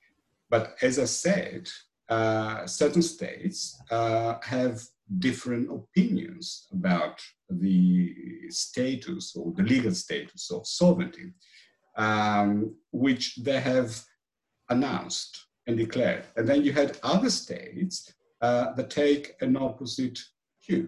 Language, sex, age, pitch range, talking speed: Greek, male, 50-69, 115-175 Hz, 110 wpm